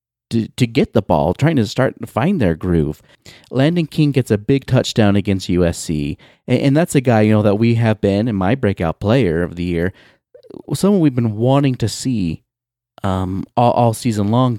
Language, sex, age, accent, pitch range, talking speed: English, male, 30-49, American, 95-130 Hz, 200 wpm